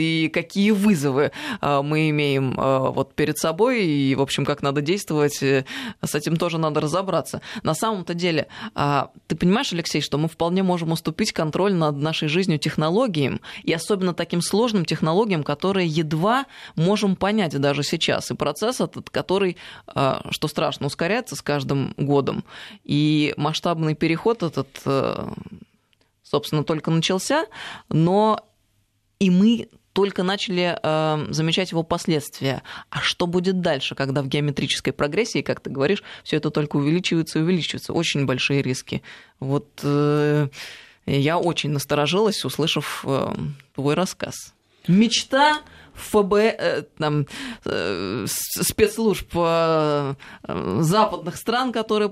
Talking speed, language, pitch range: 135 wpm, Russian, 145-190 Hz